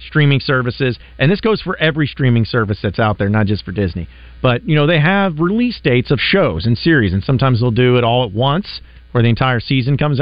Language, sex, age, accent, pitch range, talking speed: English, male, 40-59, American, 120-160 Hz, 235 wpm